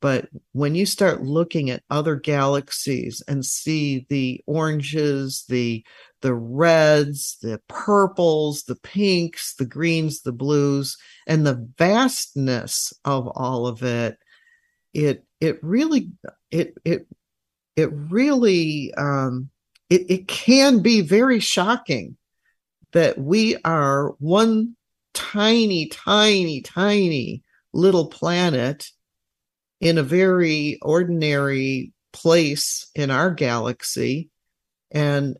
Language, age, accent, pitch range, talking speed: English, 50-69, American, 135-175 Hz, 105 wpm